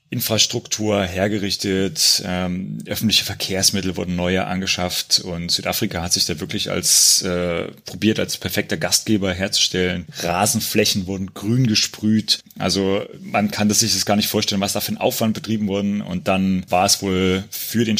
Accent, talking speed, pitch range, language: German, 160 wpm, 90-110 Hz, German